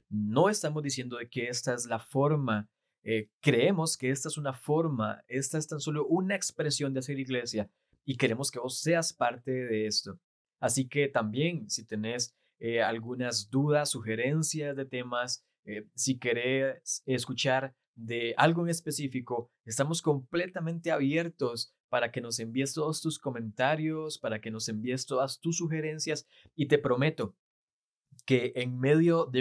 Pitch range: 115-155 Hz